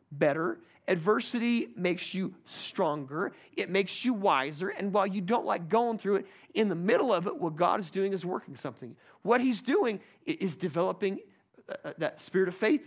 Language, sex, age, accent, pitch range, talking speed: English, male, 40-59, American, 180-255 Hz, 175 wpm